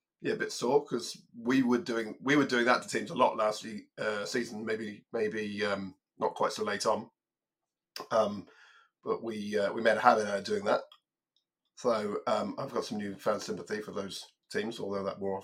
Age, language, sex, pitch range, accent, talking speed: 30-49, English, male, 105-175 Hz, British, 210 wpm